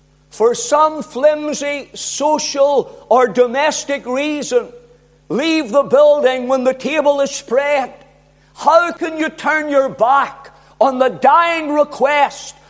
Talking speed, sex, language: 120 wpm, male, English